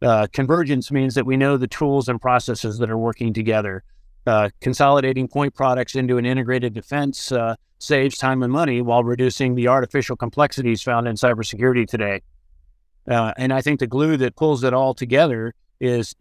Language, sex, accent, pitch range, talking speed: English, male, American, 115-135 Hz, 180 wpm